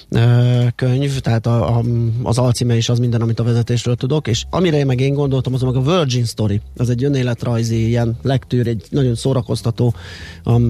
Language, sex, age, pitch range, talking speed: Hungarian, male, 30-49, 115-130 Hz, 180 wpm